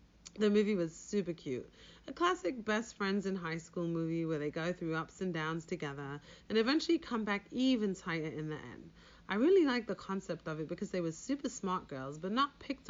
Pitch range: 165-225 Hz